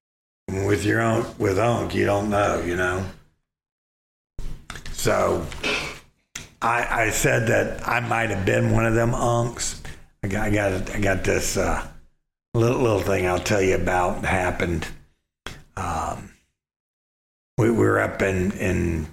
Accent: American